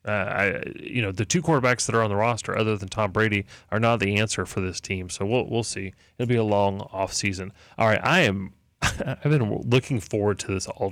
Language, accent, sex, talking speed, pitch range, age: English, American, male, 240 wpm, 100-120 Hz, 30-49